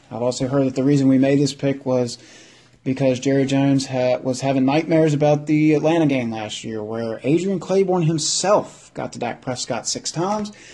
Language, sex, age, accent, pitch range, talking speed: English, male, 30-49, American, 120-145 Hz, 185 wpm